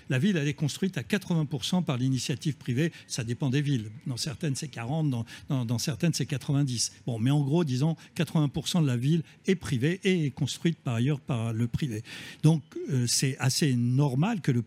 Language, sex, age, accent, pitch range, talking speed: French, male, 60-79, French, 125-165 Hz, 205 wpm